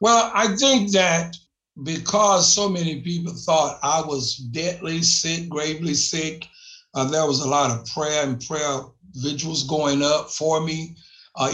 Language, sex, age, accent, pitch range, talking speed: English, male, 60-79, American, 135-165 Hz, 155 wpm